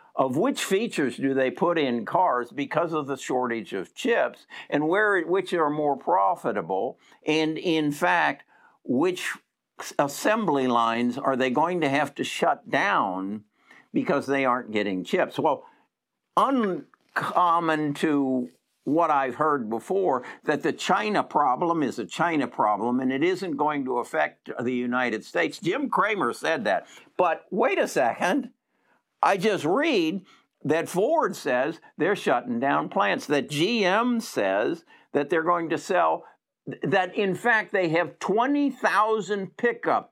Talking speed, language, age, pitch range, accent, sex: 145 wpm, English, 60-79, 140-200 Hz, American, male